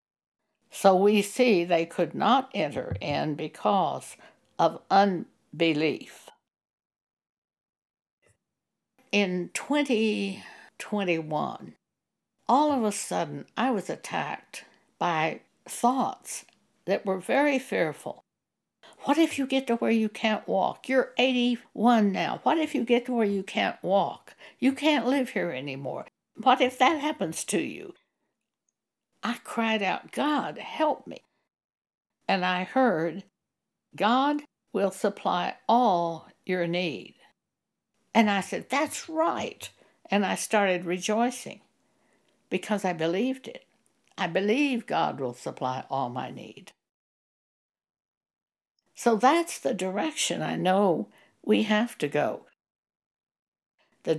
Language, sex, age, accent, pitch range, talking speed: English, female, 60-79, American, 185-255 Hz, 115 wpm